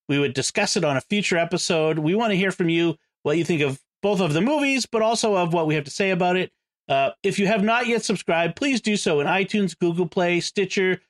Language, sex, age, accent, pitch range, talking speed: English, male, 40-59, American, 150-195 Hz, 255 wpm